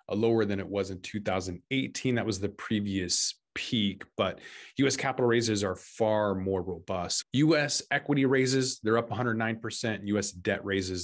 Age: 20-39